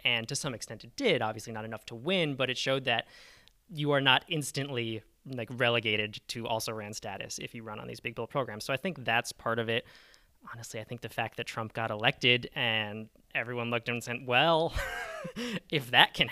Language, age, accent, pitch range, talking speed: English, 20-39, American, 110-135 Hz, 220 wpm